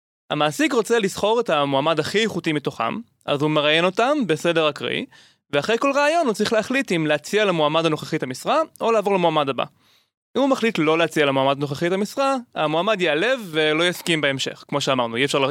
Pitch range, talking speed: 150-215 Hz, 185 wpm